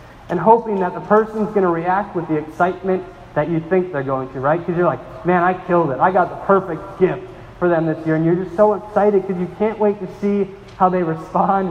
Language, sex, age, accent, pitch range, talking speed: English, male, 30-49, American, 165-200 Hz, 245 wpm